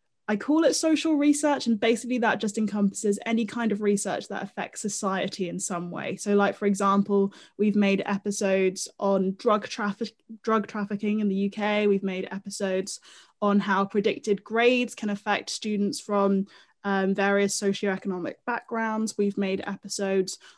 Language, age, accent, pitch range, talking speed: English, 10-29, British, 195-225 Hz, 155 wpm